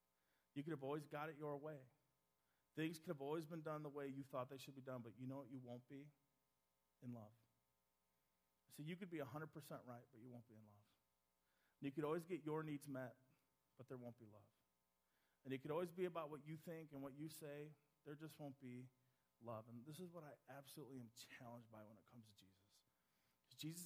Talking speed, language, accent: 225 wpm, English, American